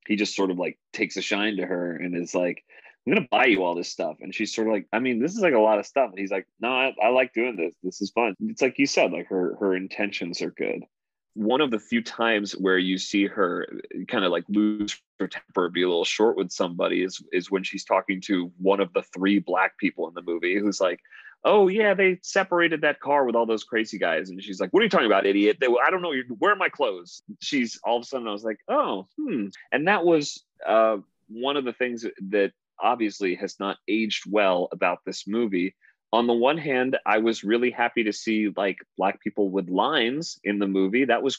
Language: English